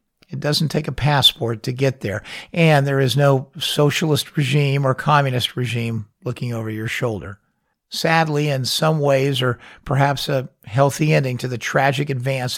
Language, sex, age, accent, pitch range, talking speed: English, male, 50-69, American, 120-155 Hz, 160 wpm